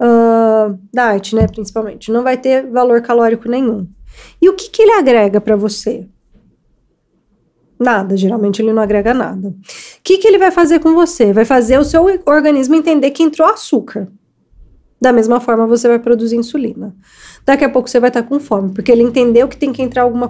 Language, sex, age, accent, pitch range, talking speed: Portuguese, female, 20-39, Brazilian, 215-275 Hz, 185 wpm